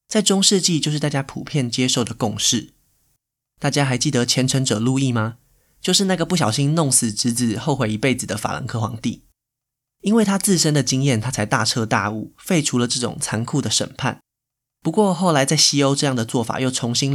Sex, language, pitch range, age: male, Chinese, 115-145 Hz, 20-39